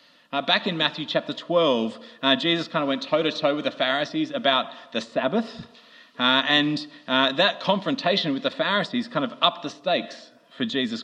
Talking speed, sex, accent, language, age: 180 wpm, male, Australian, English, 30-49